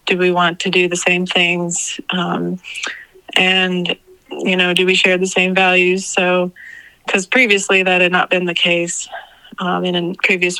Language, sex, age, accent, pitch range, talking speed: English, female, 30-49, American, 180-200 Hz, 175 wpm